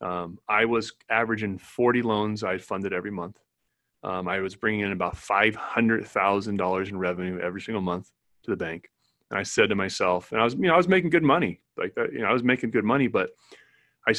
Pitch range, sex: 100-135 Hz, male